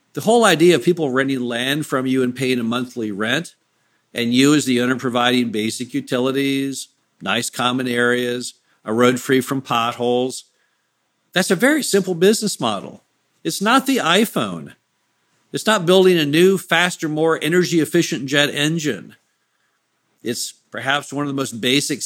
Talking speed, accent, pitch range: 155 wpm, American, 125-165 Hz